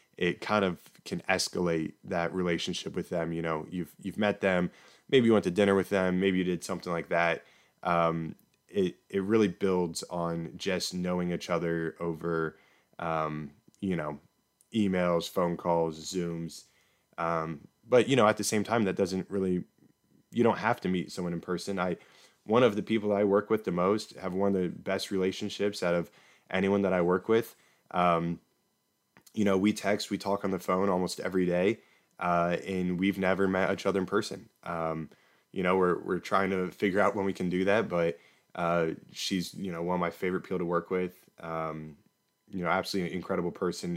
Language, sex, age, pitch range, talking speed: English, male, 20-39, 85-95 Hz, 195 wpm